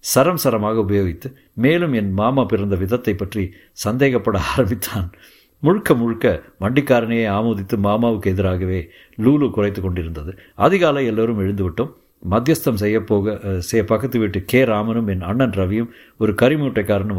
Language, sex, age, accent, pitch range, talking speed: Tamil, male, 50-69, native, 95-120 Hz, 125 wpm